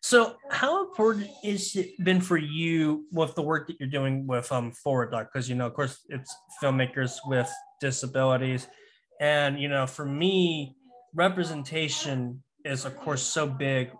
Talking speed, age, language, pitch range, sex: 165 wpm, 20-39, English, 130-175 Hz, male